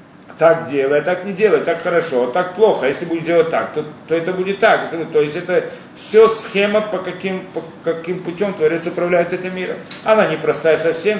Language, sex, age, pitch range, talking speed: Russian, male, 40-59, 145-185 Hz, 200 wpm